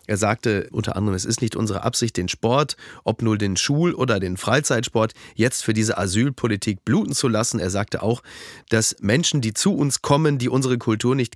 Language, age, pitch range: German, 30-49, 110-140 Hz